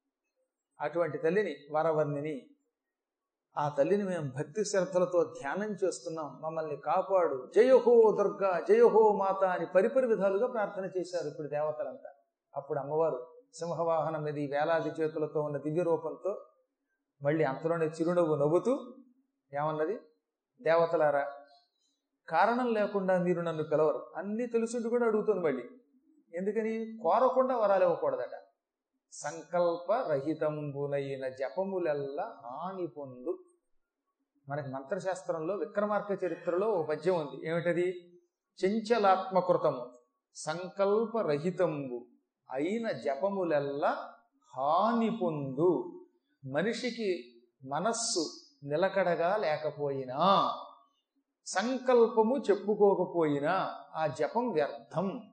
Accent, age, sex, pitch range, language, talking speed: native, 30-49, male, 155-225 Hz, Telugu, 85 wpm